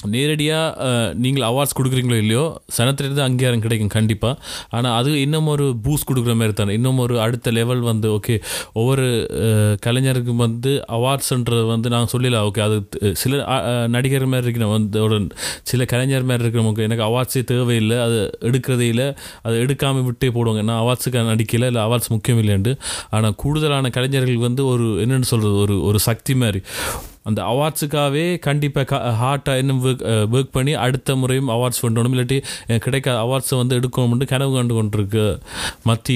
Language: Tamil